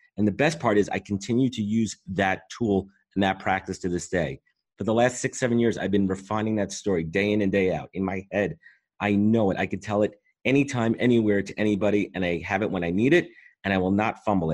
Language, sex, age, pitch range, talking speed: English, male, 30-49, 95-115 Hz, 250 wpm